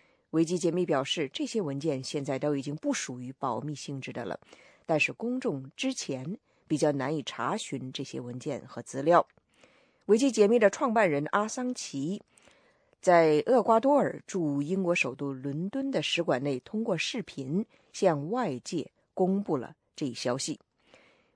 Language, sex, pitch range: English, female, 145-220 Hz